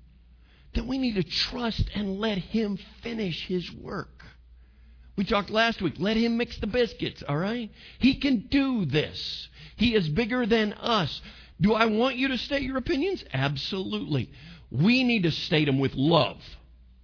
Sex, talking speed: male, 165 wpm